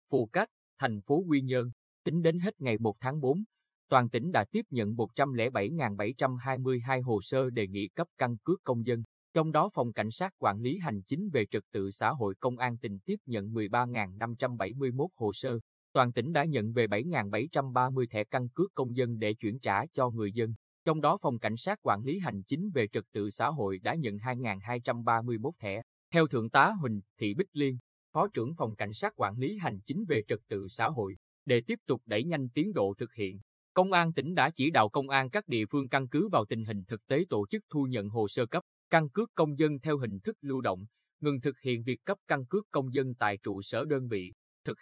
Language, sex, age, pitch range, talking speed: Vietnamese, male, 20-39, 110-150 Hz, 220 wpm